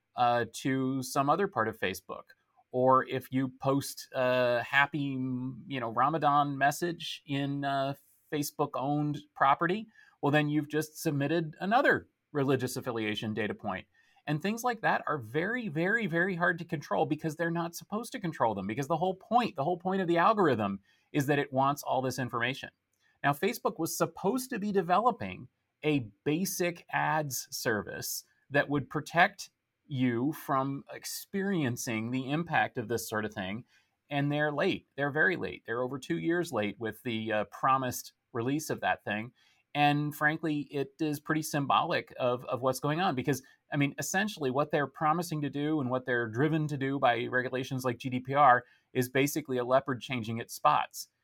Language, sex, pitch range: English, male, 125-155 Hz